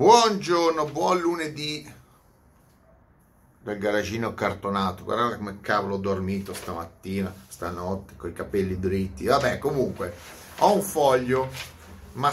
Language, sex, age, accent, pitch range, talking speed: Italian, male, 30-49, native, 100-130 Hz, 110 wpm